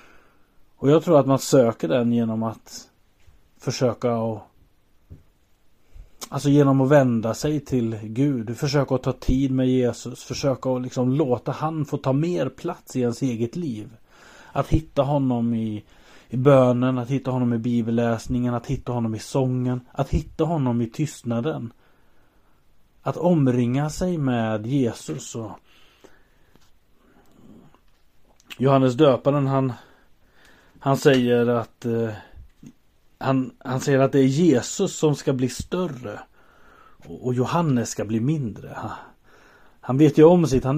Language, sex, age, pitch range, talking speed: Swedish, male, 30-49, 115-140 Hz, 140 wpm